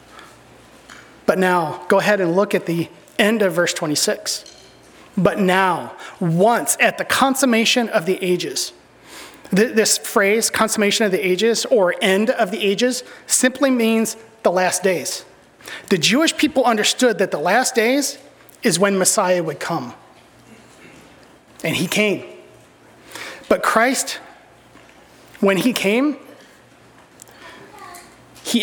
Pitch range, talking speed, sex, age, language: 180-225 Hz, 120 wpm, male, 30-49, English